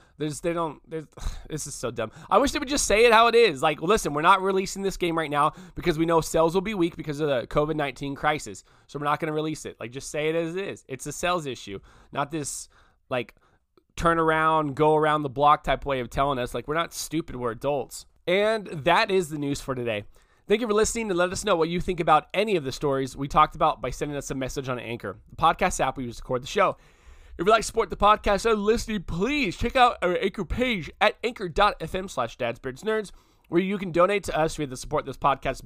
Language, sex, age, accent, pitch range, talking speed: English, male, 20-39, American, 140-185 Hz, 250 wpm